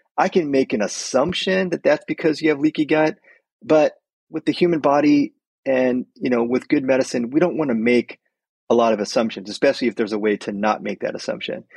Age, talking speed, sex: 30-49, 215 wpm, male